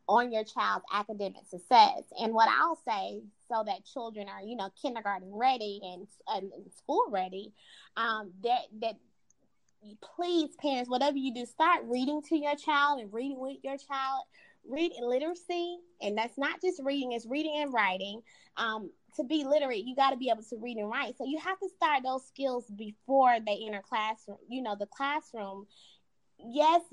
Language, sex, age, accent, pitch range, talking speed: English, female, 20-39, American, 220-275 Hz, 180 wpm